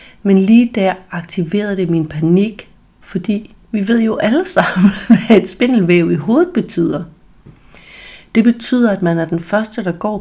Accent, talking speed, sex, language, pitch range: native, 165 wpm, female, Danish, 170-215 Hz